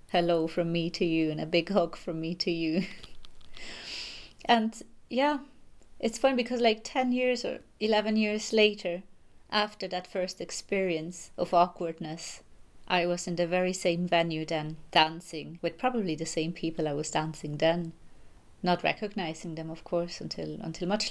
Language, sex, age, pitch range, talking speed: English, female, 30-49, 165-205 Hz, 160 wpm